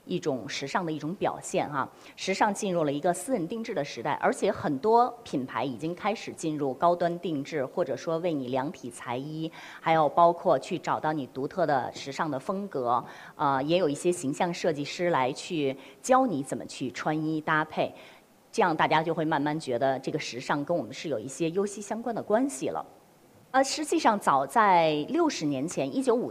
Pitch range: 145-200 Hz